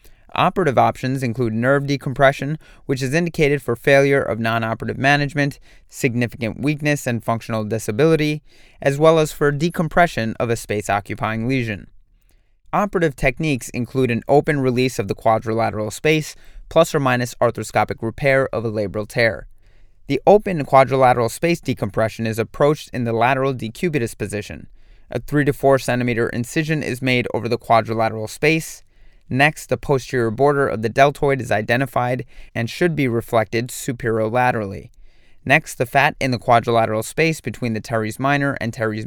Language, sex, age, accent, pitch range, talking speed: English, male, 30-49, American, 115-145 Hz, 150 wpm